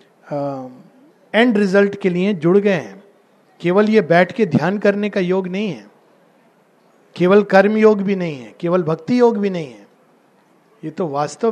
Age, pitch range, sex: 50-69, 175-215 Hz, male